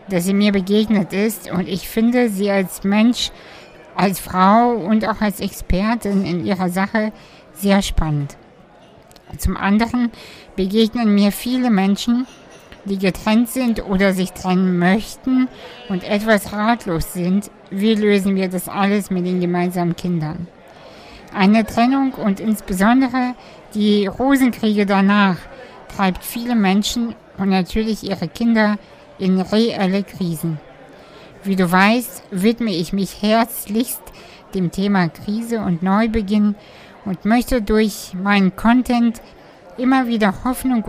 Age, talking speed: 60-79, 125 wpm